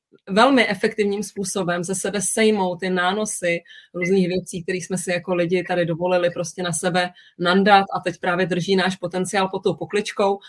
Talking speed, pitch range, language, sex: 170 wpm, 165-190 Hz, Czech, female